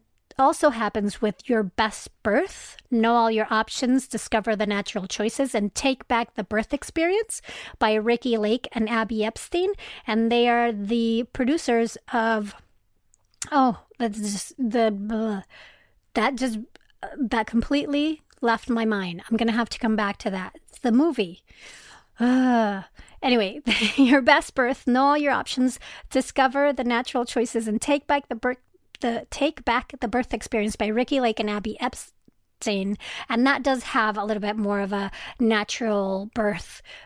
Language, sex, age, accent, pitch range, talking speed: English, female, 40-59, American, 210-255 Hz, 155 wpm